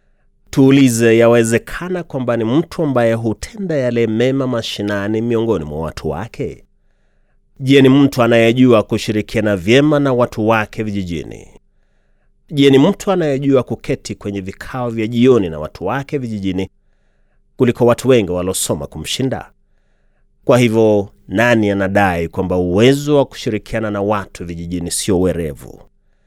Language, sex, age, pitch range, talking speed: Swahili, male, 30-49, 95-125 Hz, 130 wpm